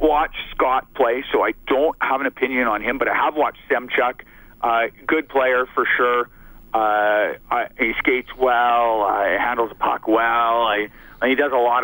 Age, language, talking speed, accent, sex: 40-59, English, 190 wpm, American, male